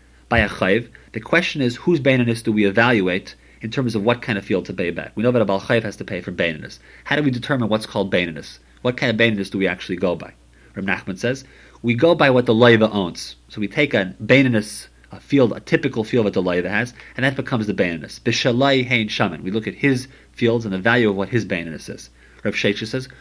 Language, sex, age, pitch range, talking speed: English, male, 40-59, 100-135 Hz, 245 wpm